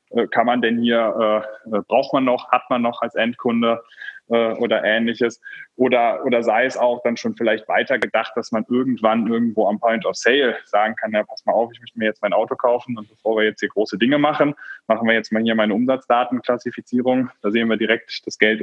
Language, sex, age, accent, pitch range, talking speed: German, male, 20-39, German, 115-145 Hz, 220 wpm